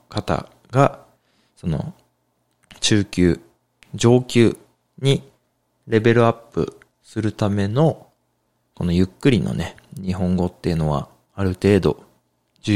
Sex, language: male, Japanese